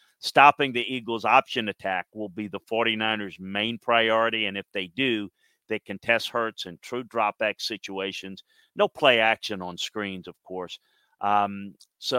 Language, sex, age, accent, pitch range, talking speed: English, male, 50-69, American, 105-120 Hz, 160 wpm